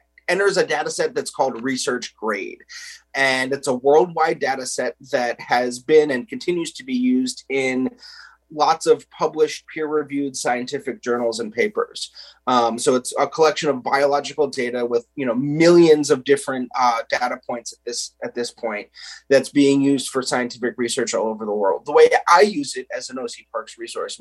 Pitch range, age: 125-175 Hz, 30-49